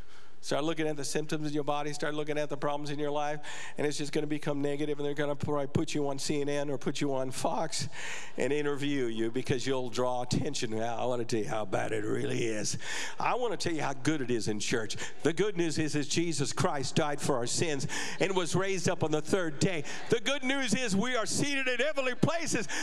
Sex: male